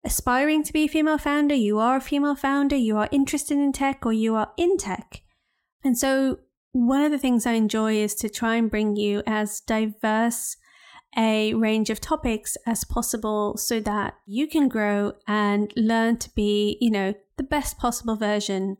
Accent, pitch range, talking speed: British, 210-255 Hz, 185 wpm